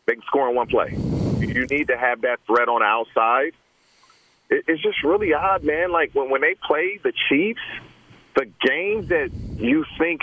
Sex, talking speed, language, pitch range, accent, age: male, 175 wpm, English, 125-180 Hz, American, 40-59